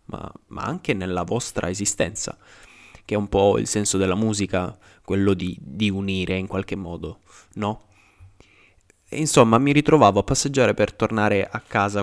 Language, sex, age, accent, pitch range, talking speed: Italian, male, 20-39, native, 95-110 Hz, 160 wpm